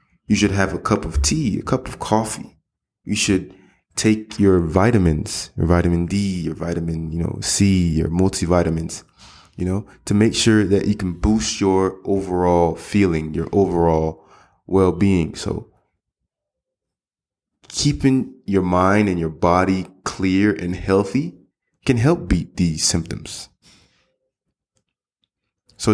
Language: English